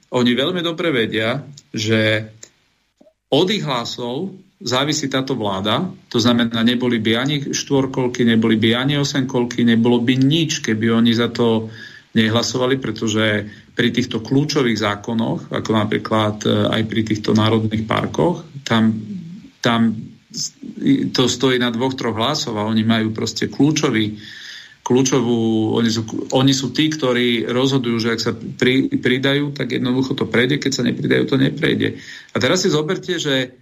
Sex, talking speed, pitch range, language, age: male, 145 wpm, 110-130 Hz, Slovak, 40-59